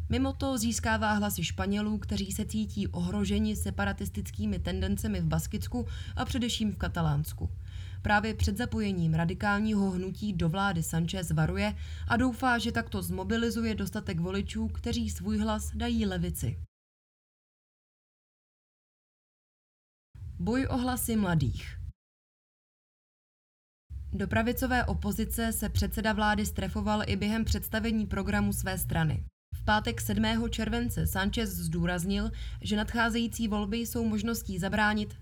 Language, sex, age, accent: Czech, female, 20-39, native